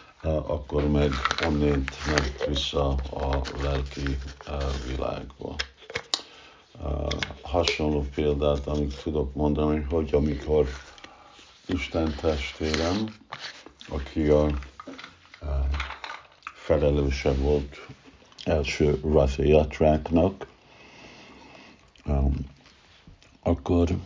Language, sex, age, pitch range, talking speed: Hungarian, male, 60-79, 70-80 Hz, 70 wpm